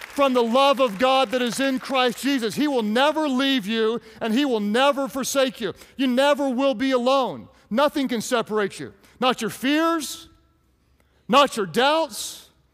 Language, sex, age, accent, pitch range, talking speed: English, male, 40-59, American, 235-290 Hz, 170 wpm